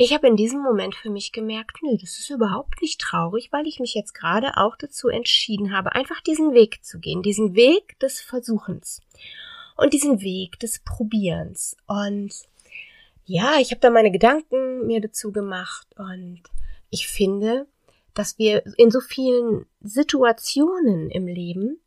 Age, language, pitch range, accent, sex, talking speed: 30-49, German, 200-255 Hz, German, female, 155 wpm